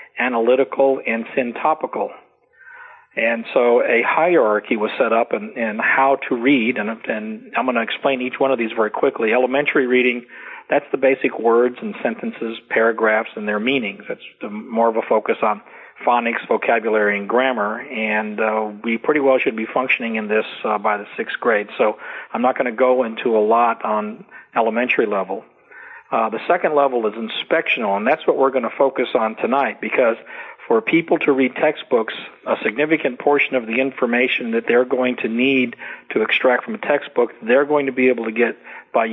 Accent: American